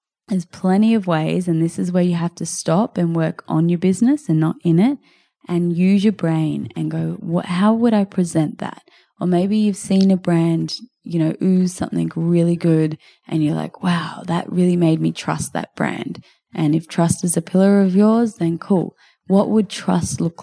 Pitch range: 165-190 Hz